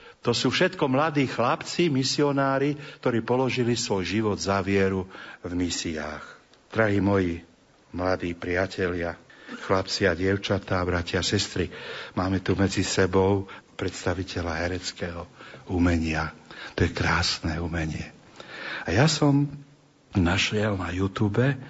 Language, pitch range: Slovak, 95-120 Hz